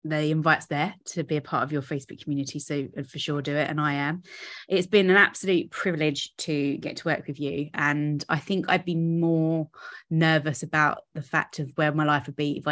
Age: 20-39